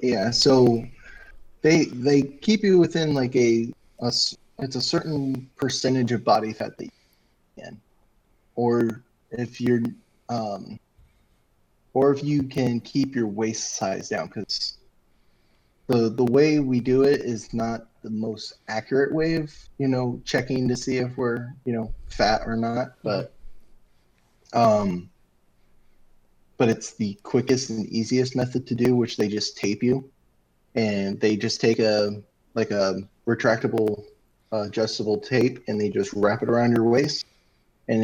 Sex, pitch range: male, 105-125 Hz